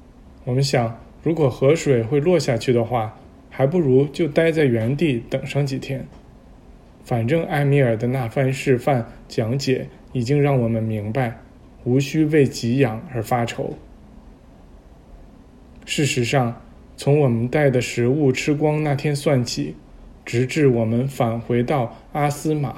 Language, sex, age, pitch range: Chinese, male, 20-39, 120-140 Hz